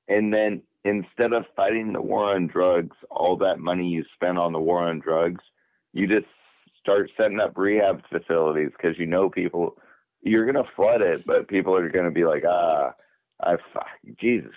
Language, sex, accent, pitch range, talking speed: English, male, American, 85-105 Hz, 185 wpm